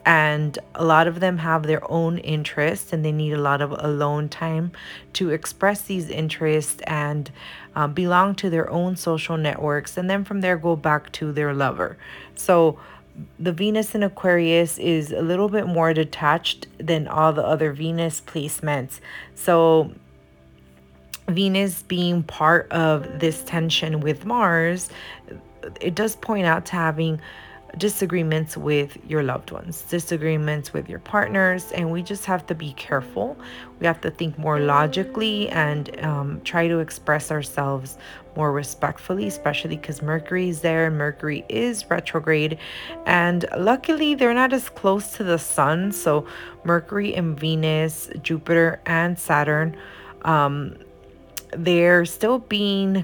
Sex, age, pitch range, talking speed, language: female, 30-49, 150-180 Hz, 145 wpm, English